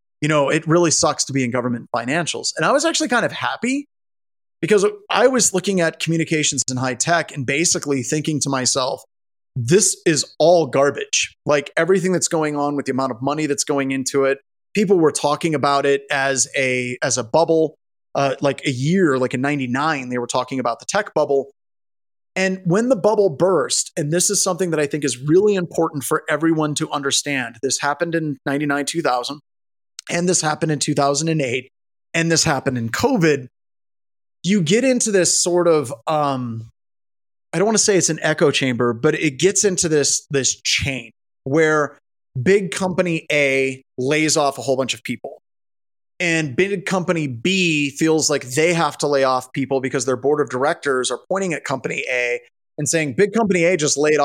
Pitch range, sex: 135-180 Hz, male